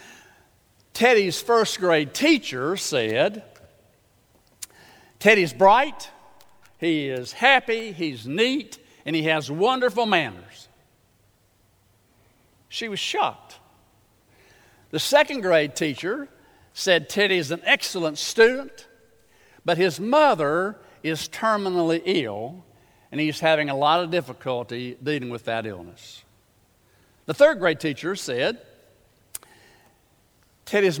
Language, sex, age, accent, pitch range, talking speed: English, male, 60-79, American, 130-190 Hz, 95 wpm